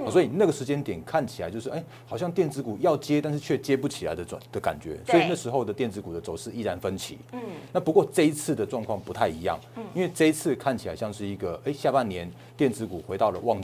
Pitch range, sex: 110-155 Hz, male